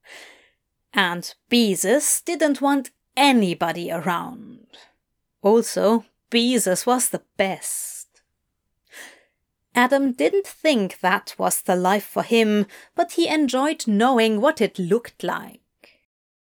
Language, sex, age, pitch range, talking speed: English, female, 30-49, 205-275 Hz, 100 wpm